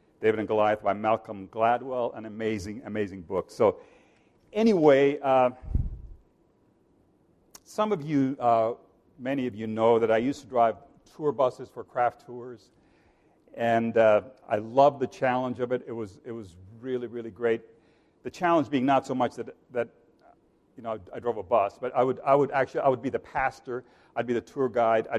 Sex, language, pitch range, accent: male, English, 110-130 Hz, American